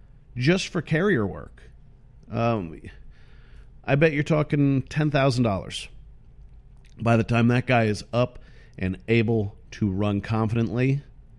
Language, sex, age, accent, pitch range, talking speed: English, male, 40-59, American, 110-140 Hz, 115 wpm